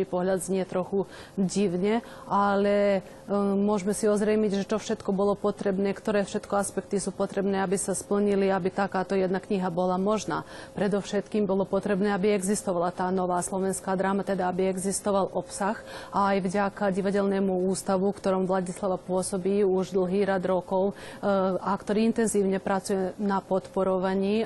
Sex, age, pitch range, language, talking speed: female, 30-49, 185-200 Hz, Slovak, 145 wpm